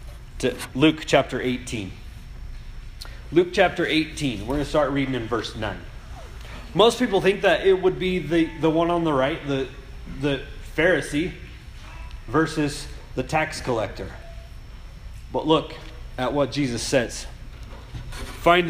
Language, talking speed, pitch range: English, 130 wpm, 115-140 Hz